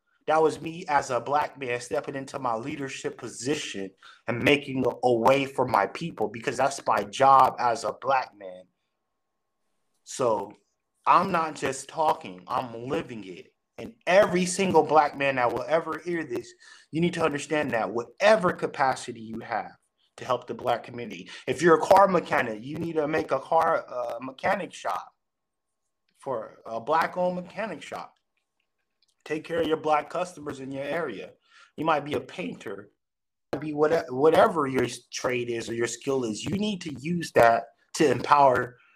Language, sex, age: English, male, 20-39